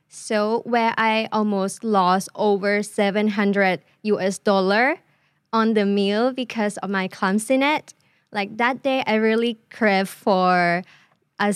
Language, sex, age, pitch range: Thai, female, 20-39, 200-245 Hz